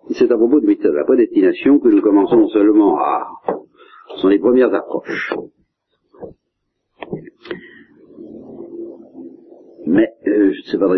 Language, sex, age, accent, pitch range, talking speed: French, male, 50-69, French, 325-365 Hz, 125 wpm